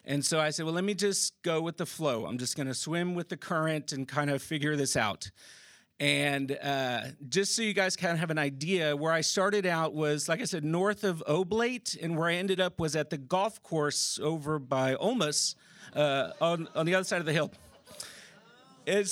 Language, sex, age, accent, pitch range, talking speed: English, male, 40-59, American, 150-190 Hz, 220 wpm